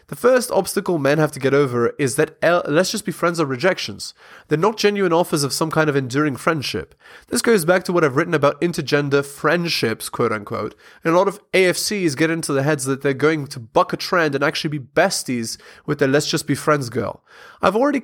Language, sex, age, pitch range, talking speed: English, male, 20-39, 145-195 Hz, 225 wpm